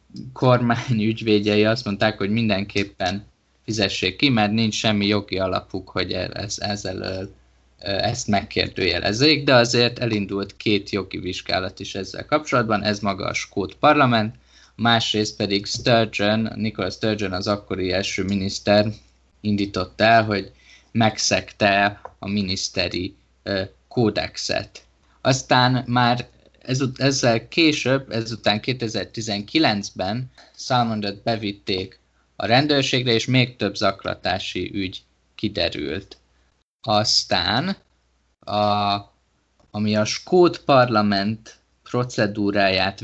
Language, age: Hungarian, 20-39